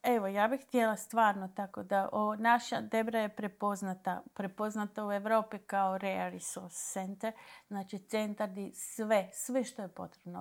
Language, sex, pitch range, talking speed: Croatian, female, 190-230 Hz, 150 wpm